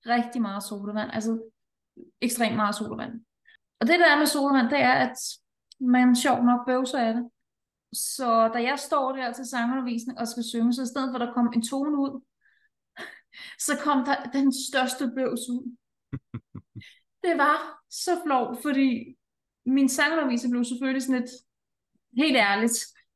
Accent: native